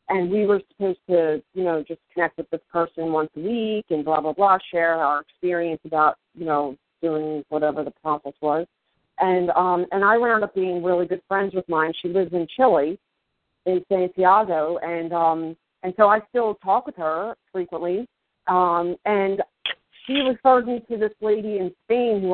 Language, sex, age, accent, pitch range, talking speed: English, female, 40-59, American, 165-195 Hz, 185 wpm